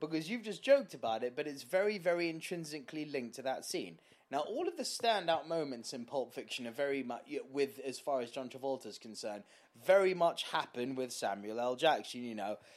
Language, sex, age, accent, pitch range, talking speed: English, male, 20-39, British, 125-180 Hz, 200 wpm